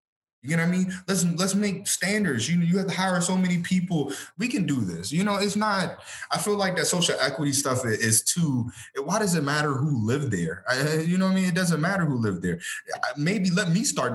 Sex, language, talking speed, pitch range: male, English, 240 wpm, 115-160 Hz